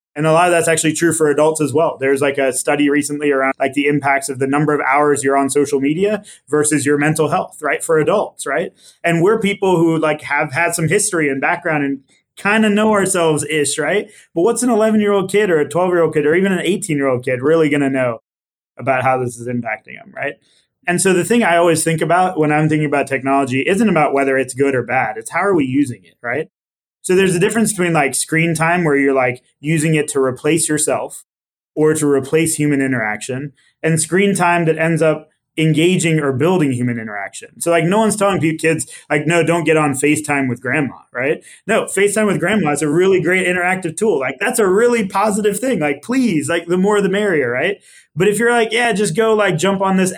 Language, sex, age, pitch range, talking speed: English, male, 20-39, 140-180 Hz, 225 wpm